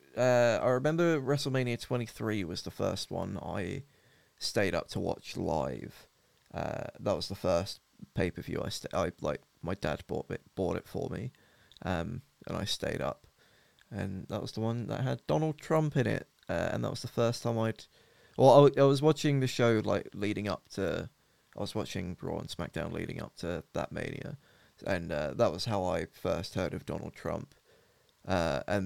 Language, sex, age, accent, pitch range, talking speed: English, male, 20-39, British, 105-130 Hz, 200 wpm